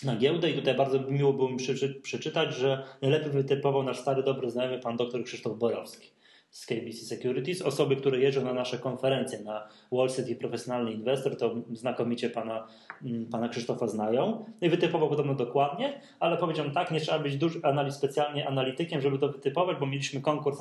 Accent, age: native, 20-39